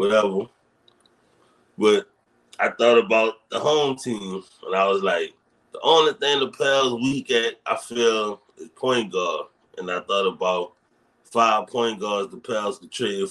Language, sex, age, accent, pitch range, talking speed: English, male, 30-49, American, 90-125 Hz, 160 wpm